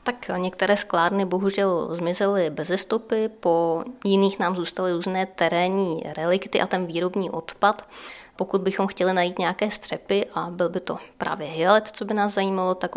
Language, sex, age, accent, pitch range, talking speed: Czech, female, 20-39, native, 170-195 Hz, 160 wpm